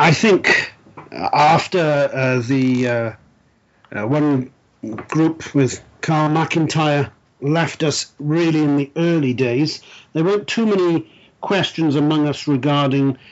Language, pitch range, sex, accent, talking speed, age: English, 135-160 Hz, male, British, 120 wpm, 40-59